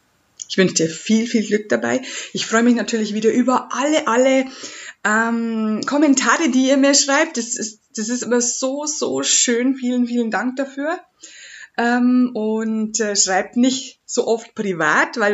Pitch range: 195-255 Hz